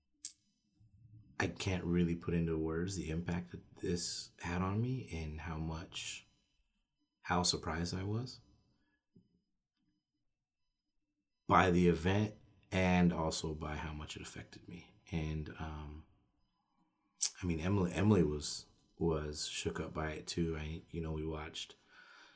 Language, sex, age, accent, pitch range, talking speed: English, male, 30-49, American, 80-90 Hz, 130 wpm